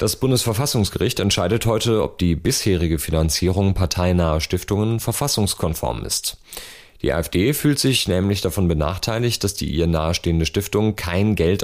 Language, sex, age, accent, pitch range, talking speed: German, male, 30-49, German, 85-110 Hz, 135 wpm